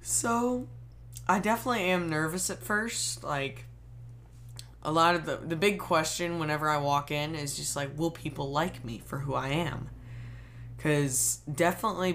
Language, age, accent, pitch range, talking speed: English, 20-39, American, 120-165 Hz, 160 wpm